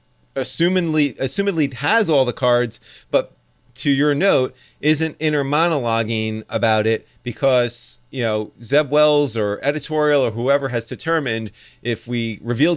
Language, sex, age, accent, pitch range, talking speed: English, male, 30-49, American, 110-135 Hz, 135 wpm